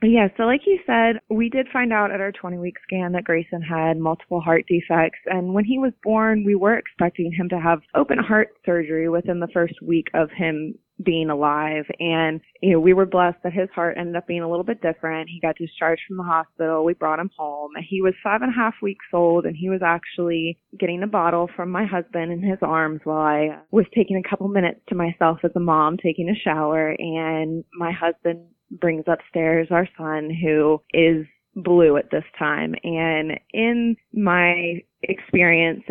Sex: female